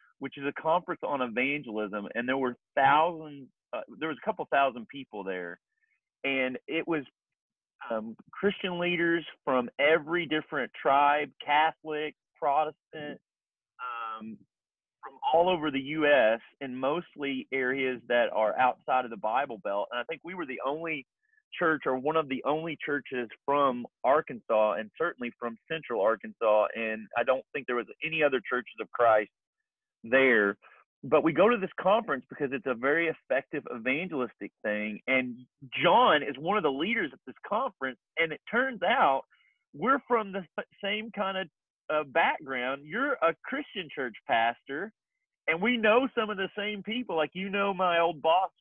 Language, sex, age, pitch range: English, male, 30-49, 125-180 Hz